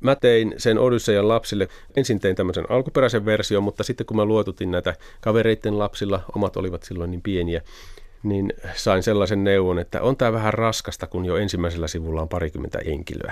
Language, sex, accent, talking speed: Finnish, male, native, 175 wpm